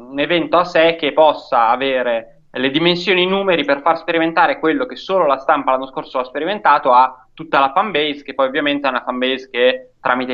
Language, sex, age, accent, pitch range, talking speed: Italian, male, 20-39, native, 130-160 Hz, 205 wpm